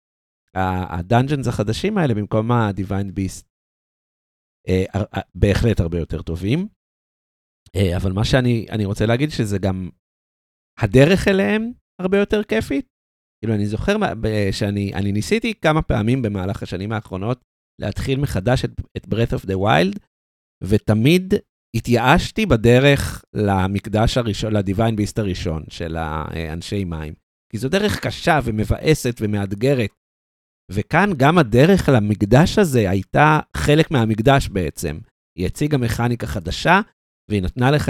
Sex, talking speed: male, 115 wpm